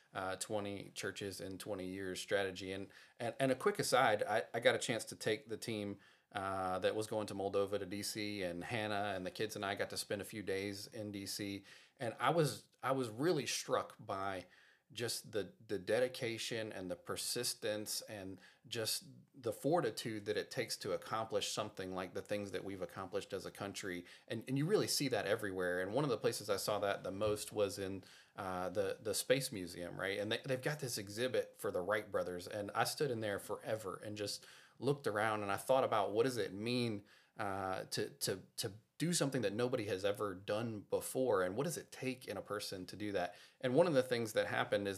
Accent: American